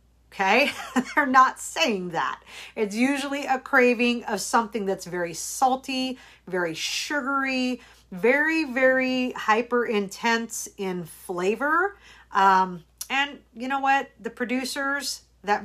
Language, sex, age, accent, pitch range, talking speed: English, female, 50-69, American, 190-250 Hz, 115 wpm